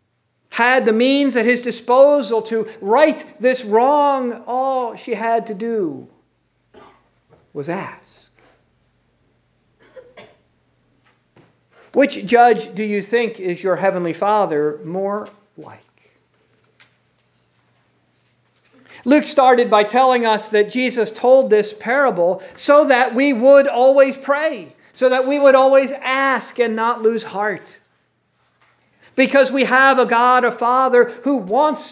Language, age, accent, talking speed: English, 50-69, American, 120 wpm